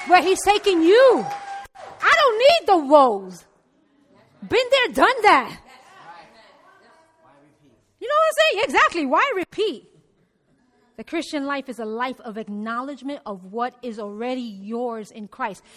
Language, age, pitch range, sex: English, 30-49, 235-335 Hz, female